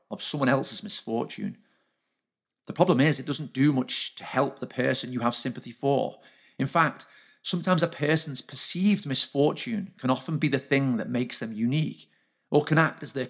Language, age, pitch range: English, 40-59, 125-160 Hz